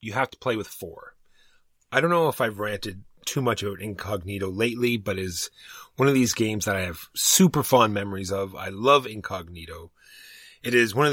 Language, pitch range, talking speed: English, 95-120 Hz, 205 wpm